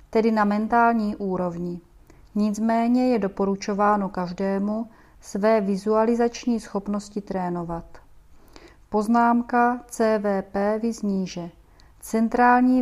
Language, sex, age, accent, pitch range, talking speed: Czech, female, 30-49, native, 200-235 Hz, 75 wpm